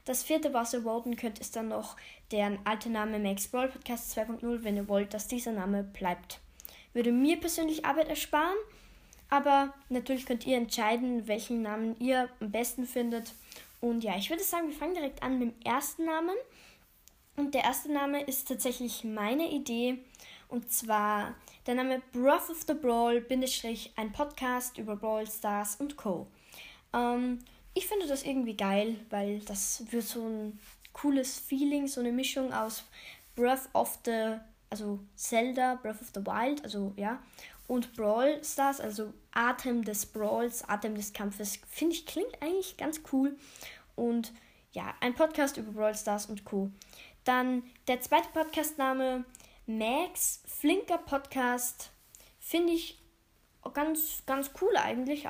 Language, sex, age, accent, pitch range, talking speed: German, female, 20-39, German, 220-280 Hz, 155 wpm